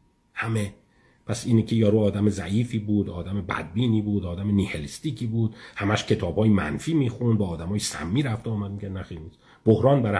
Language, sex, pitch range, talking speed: Persian, male, 95-115 Hz, 165 wpm